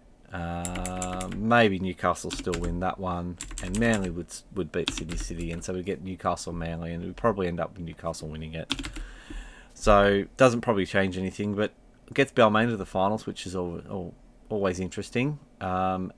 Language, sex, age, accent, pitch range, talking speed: English, male, 30-49, Australian, 90-115 Hz, 175 wpm